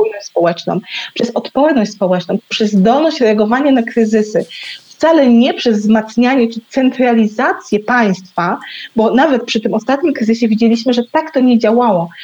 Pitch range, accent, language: 210-265 Hz, native, Polish